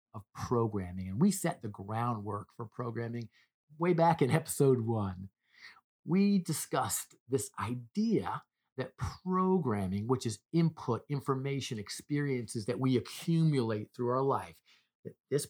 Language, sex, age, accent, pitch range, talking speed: English, male, 50-69, American, 110-140 Hz, 130 wpm